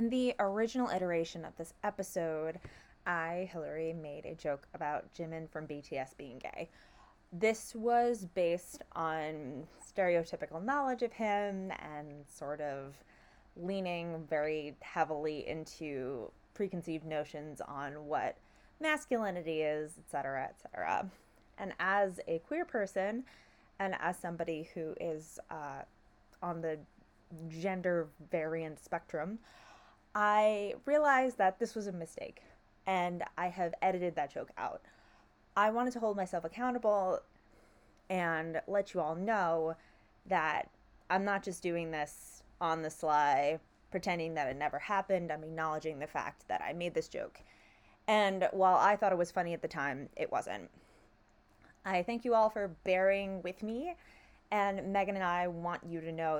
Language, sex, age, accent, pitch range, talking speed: English, female, 20-39, American, 155-200 Hz, 140 wpm